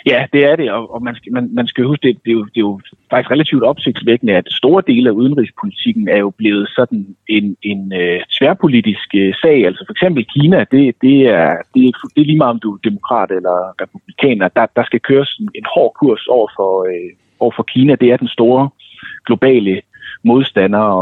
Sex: male